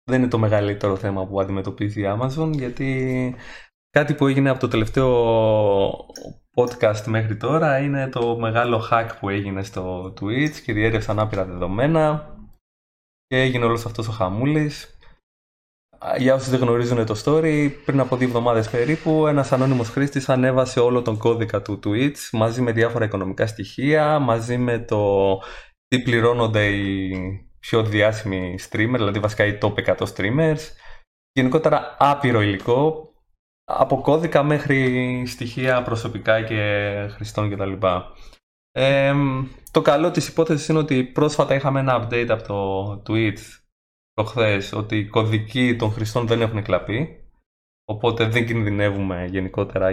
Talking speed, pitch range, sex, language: 140 wpm, 105-135 Hz, male, Greek